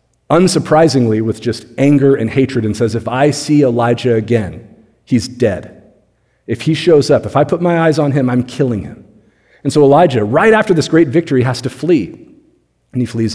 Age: 40-59